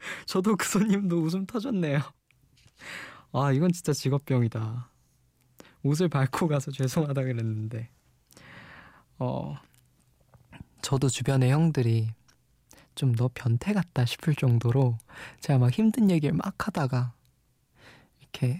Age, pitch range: 20-39, 125-160 Hz